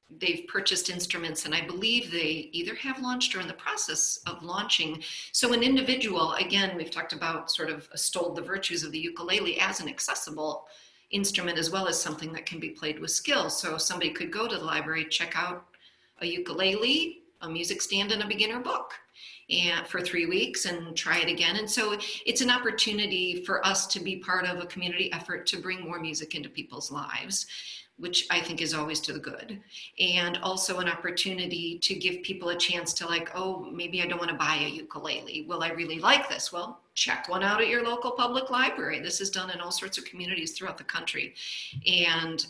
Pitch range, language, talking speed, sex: 165-200 Hz, English, 205 wpm, female